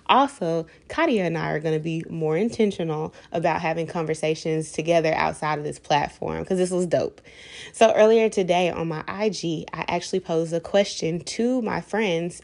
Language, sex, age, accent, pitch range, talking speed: English, female, 20-39, American, 170-225 Hz, 175 wpm